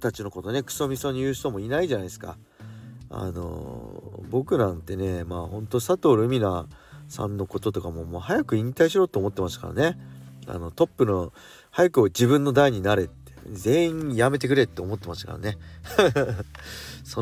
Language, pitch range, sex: Japanese, 100-150 Hz, male